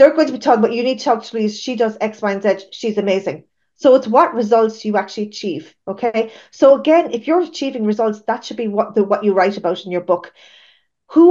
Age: 30-49